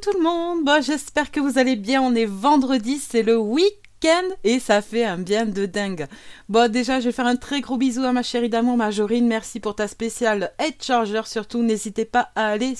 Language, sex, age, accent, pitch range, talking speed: French, female, 30-49, French, 210-265 Hz, 220 wpm